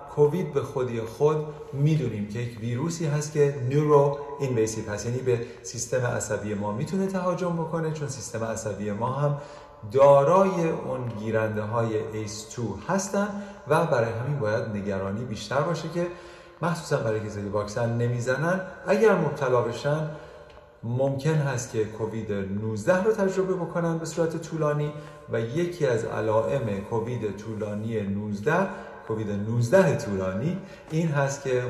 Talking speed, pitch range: 130 wpm, 110-155 Hz